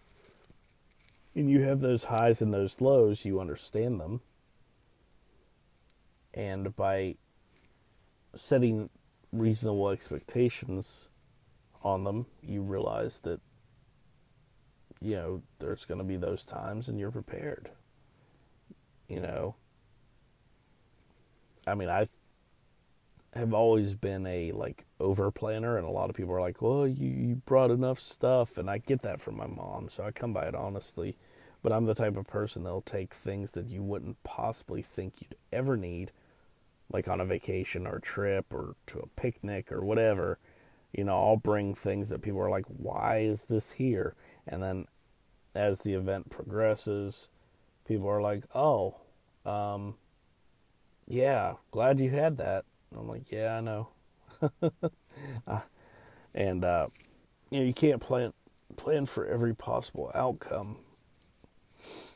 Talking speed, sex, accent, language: 145 wpm, male, American, English